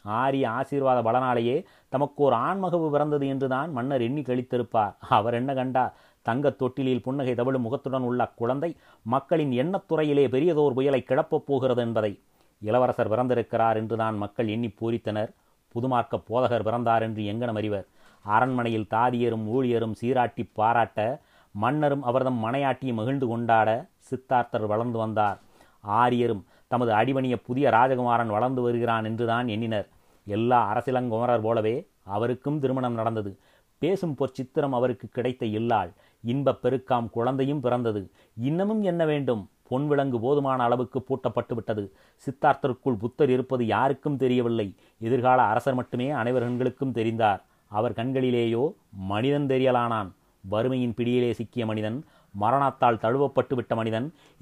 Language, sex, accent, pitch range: Tamil, male, native, 115-130 Hz